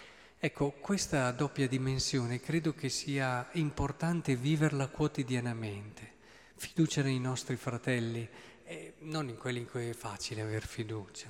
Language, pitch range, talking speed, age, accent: Italian, 120-145 Hz, 125 wpm, 40-59, native